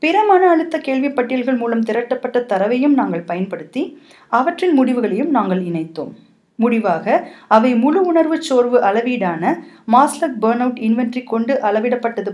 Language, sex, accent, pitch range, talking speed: Tamil, female, native, 220-295 Hz, 105 wpm